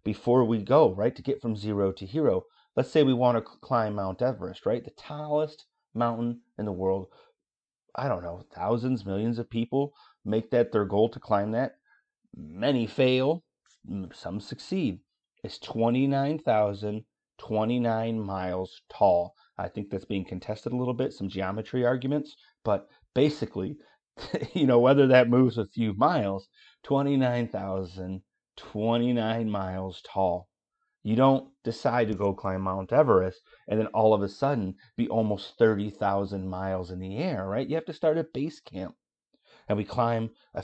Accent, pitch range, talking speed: American, 100-130 Hz, 155 wpm